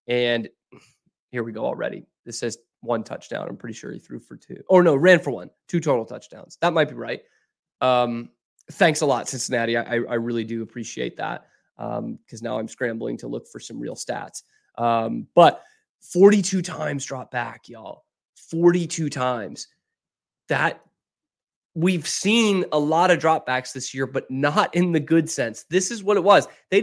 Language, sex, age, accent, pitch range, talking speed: English, male, 20-39, American, 120-165 Hz, 185 wpm